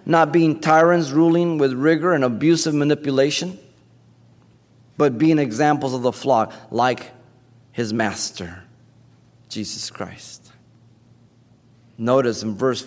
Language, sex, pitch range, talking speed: English, male, 120-145 Hz, 105 wpm